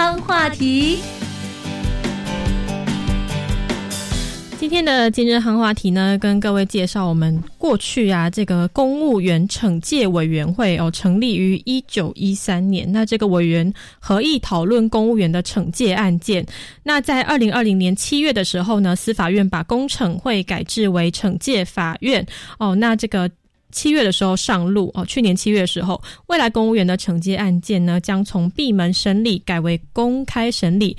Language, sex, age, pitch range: Chinese, female, 20-39, 185-230 Hz